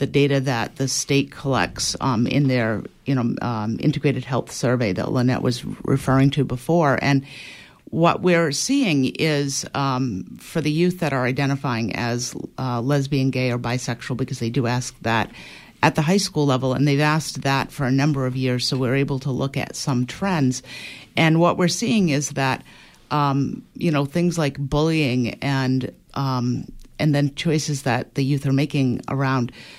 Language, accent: English, American